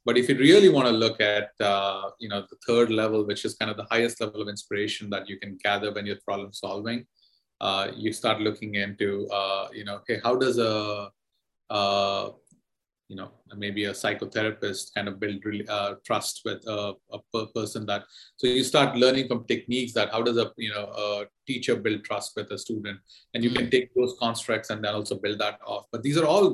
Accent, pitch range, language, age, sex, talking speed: Indian, 105-120 Hz, English, 30-49, male, 215 wpm